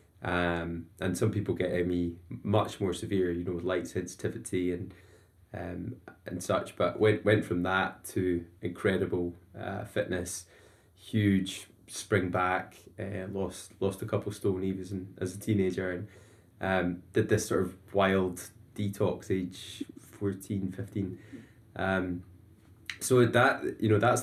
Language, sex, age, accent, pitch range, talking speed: English, male, 20-39, British, 90-105 Hz, 145 wpm